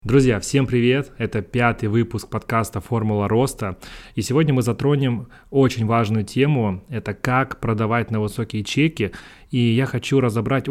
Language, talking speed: Russian, 145 wpm